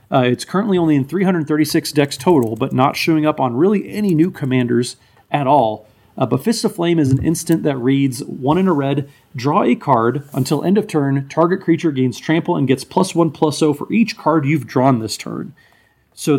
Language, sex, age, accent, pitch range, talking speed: English, male, 30-49, American, 130-165 Hz, 210 wpm